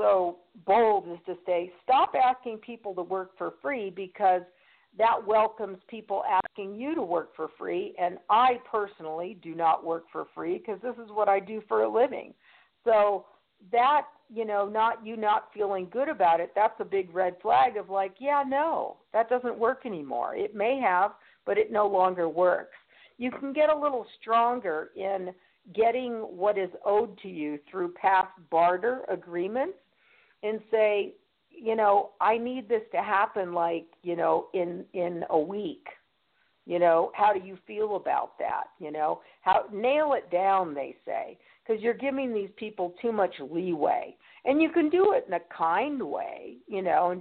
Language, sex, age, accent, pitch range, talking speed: English, female, 50-69, American, 180-230 Hz, 180 wpm